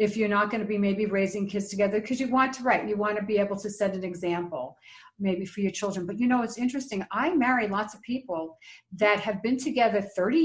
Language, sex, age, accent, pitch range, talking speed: English, female, 50-69, American, 210-295 Hz, 245 wpm